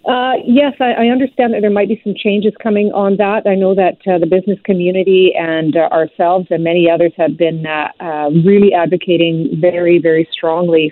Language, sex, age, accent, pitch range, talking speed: English, female, 40-59, American, 160-190 Hz, 190 wpm